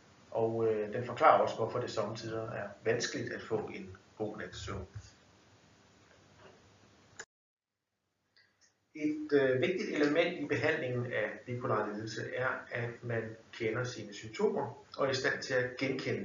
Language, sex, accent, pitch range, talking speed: Danish, male, native, 100-130 Hz, 135 wpm